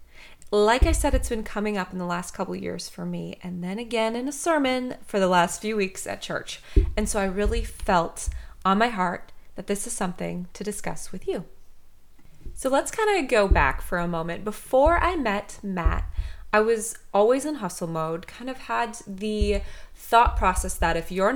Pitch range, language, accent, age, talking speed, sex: 170-235 Hz, English, American, 20-39, 200 wpm, female